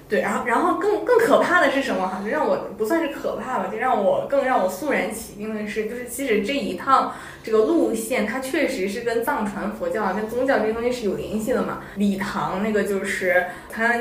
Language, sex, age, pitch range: Chinese, female, 20-39, 195-265 Hz